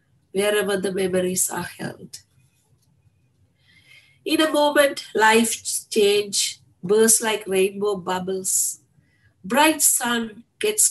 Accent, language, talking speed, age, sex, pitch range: Indian, English, 95 wpm, 50-69, female, 130-215 Hz